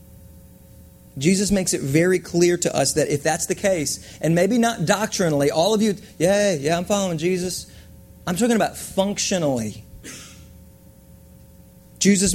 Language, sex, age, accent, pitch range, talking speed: English, male, 30-49, American, 110-170 Hz, 140 wpm